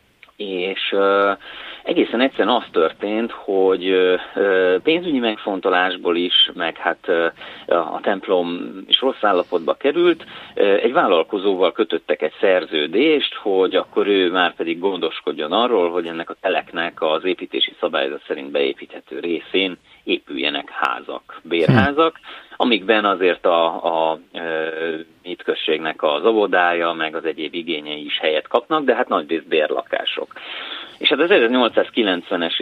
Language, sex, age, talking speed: Hungarian, male, 30-49, 120 wpm